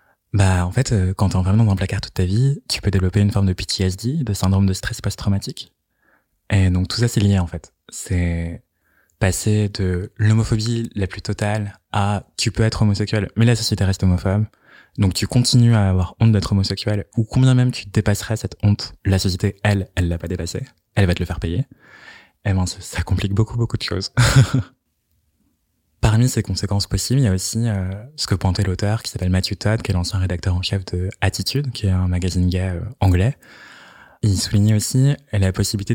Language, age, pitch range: French, 20-39, 95-115 Hz